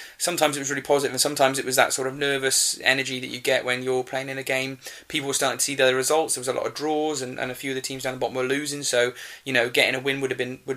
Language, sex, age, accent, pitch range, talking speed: English, male, 20-39, British, 125-155 Hz, 325 wpm